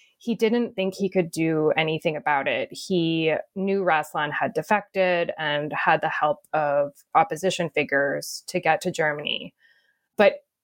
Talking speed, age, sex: 145 wpm, 20-39, female